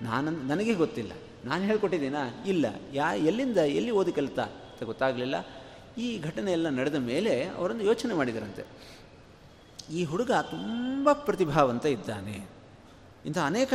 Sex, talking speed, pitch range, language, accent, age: male, 120 wpm, 135-195 Hz, Kannada, native, 30-49